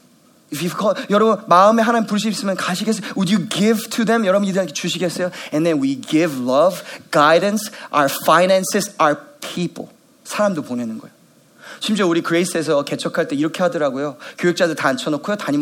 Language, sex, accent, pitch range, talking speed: English, male, Korean, 160-245 Hz, 150 wpm